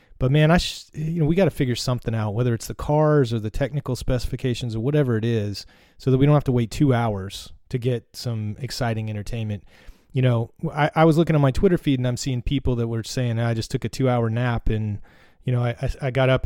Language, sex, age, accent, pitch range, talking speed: English, male, 30-49, American, 120-145 Hz, 250 wpm